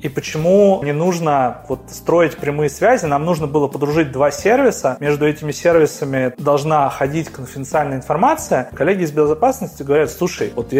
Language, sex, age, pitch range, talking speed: Russian, male, 30-49, 145-190 Hz, 145 wpm